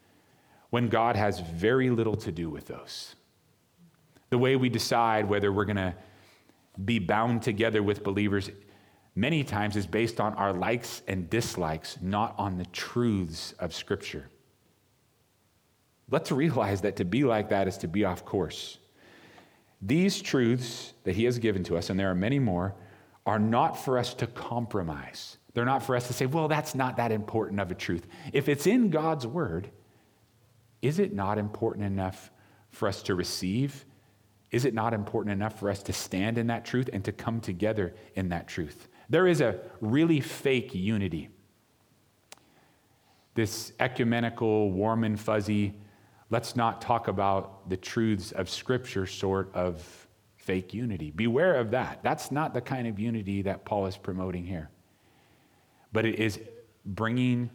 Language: English